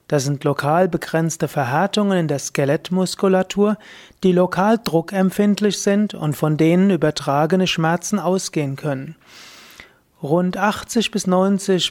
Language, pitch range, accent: German, 150-190 Hz, German